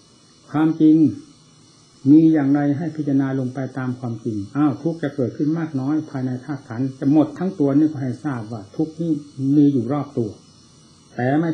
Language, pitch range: Thai, 125-150 Hz